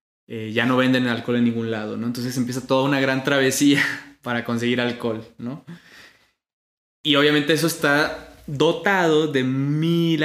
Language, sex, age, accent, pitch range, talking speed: Spanish, male, 20-39, Mexican, 115-140 Hz, 150 wpm